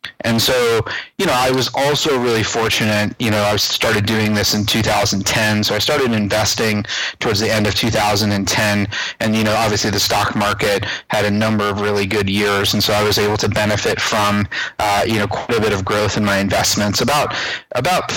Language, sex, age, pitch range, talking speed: English, male, 30-49, 100-110 Hz, 200 wpm